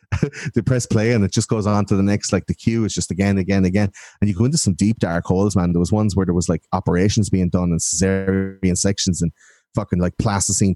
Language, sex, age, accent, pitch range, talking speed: English, male, 30-49, Irish, 90-105 Hz, 250 wpm